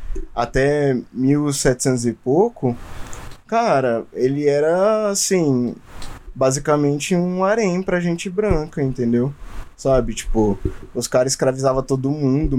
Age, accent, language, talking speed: 20-39, Brazilian, Portuguese, 105 wpm